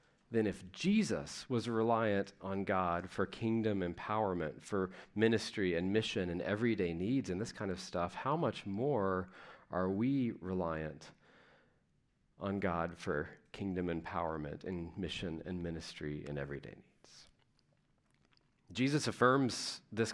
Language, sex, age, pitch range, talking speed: English, male, 40-59, 95-115 Hz, 130 wpm